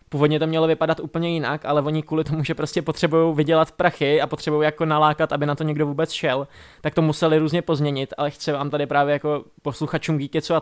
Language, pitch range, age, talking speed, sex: Czech, 145-160 Hz, 20-39, 220 wpm, male